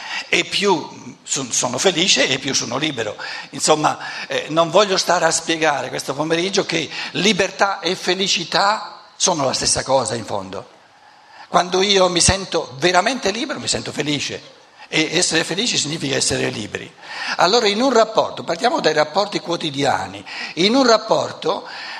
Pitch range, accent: 160-205 Hz, native